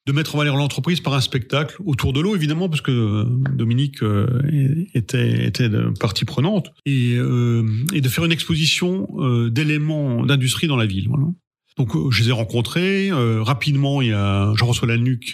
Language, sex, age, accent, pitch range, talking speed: French, male, 40-59, French, 115-140 Hz, 175 wpm